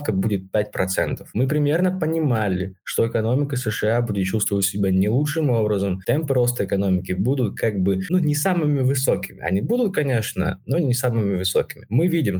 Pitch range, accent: 110-145 Hz, native